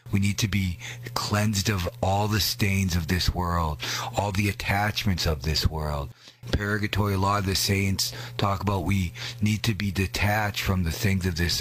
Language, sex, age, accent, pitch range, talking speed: English, male, 40-59, American, 95-115 Hz, 185 wpm